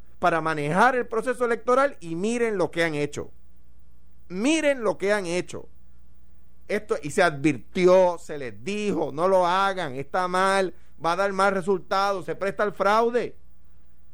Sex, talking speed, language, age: male, 155 wpm, Spanish, 50-69